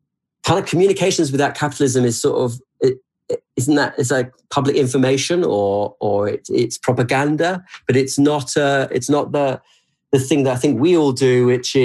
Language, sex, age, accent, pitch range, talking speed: English, male, 40-59, British, 120-145 Hz, 195 wpm